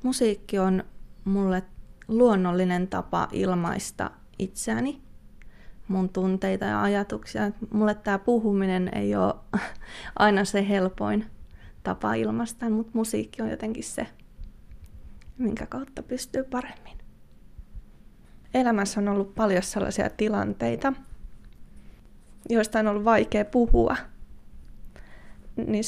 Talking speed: 95 wpm